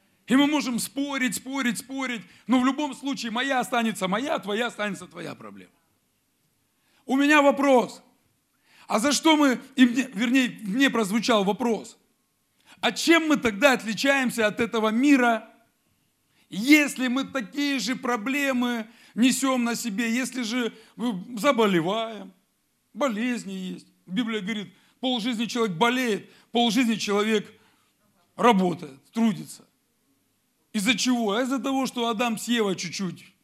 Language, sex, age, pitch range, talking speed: Russian, male, 40-59, 215-265 Hz, 120 wpm